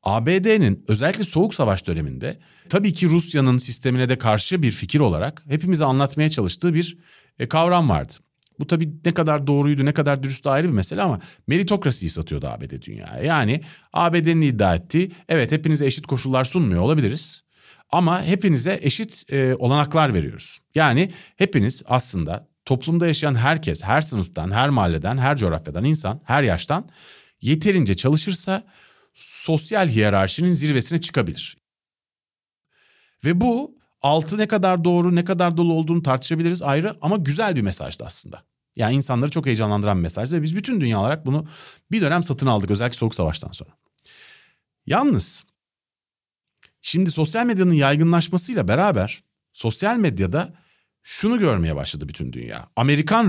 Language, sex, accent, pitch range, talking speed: Turkish, male, native, 120-170 Hz, 135 wpm